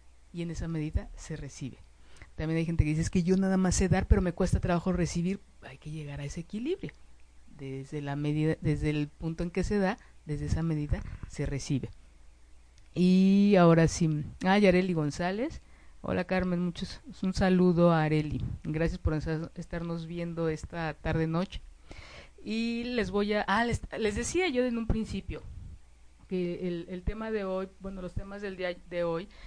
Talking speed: 180 wpm